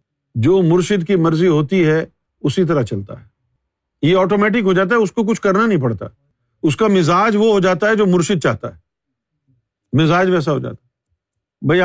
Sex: male